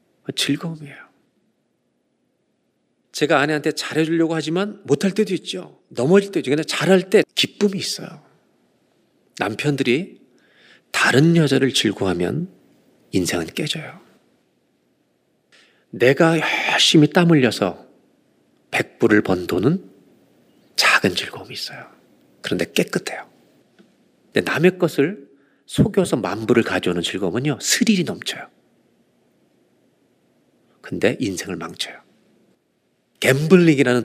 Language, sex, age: Korean, male, 40-59